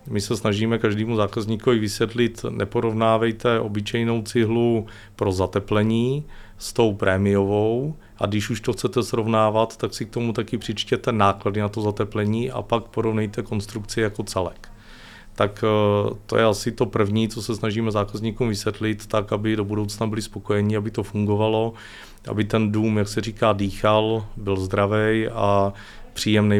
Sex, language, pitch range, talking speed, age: male, Czech, 105-115 Hz, 150 wpm, 40-59